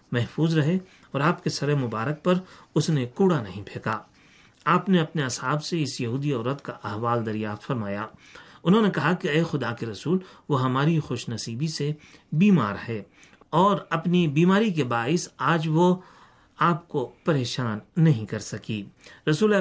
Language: Urdu